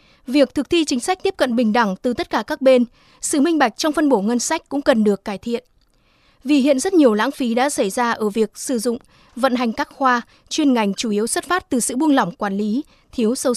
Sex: female